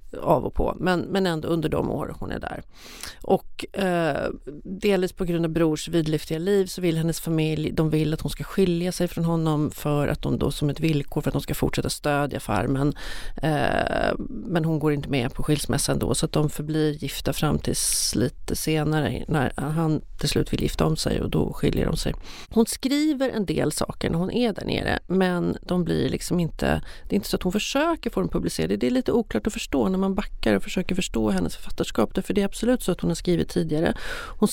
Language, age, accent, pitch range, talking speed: Swedish, 40-59, native, 155-195 Hz, 225 wpm